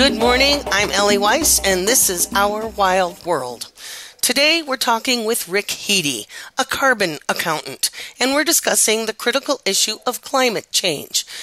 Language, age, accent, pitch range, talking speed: English, 40-59, American, 195-255 Hz, 150 wpm